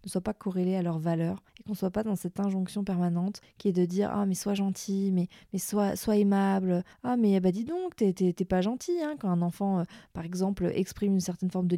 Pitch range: 180-210 Hz